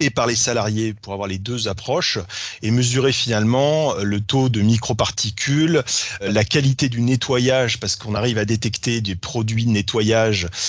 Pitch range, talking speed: 110-130 Hz, 165 wpm